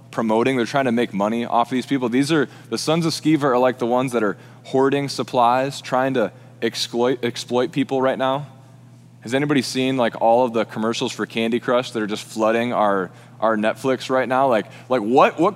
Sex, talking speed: male, 210 wpm